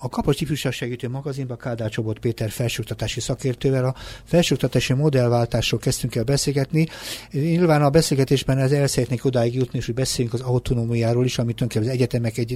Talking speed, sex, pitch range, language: 160 wpm, male, 115-130 Hz, Hungarian